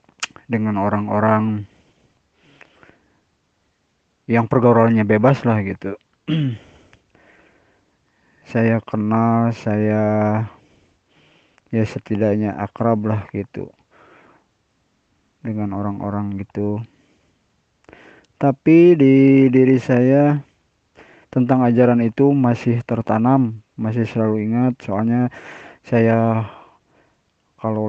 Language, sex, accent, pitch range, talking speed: Indonesian, male, native, 110-125 Hz, 70 wpm